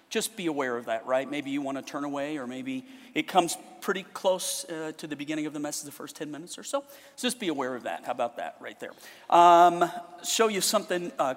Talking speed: 250 wpm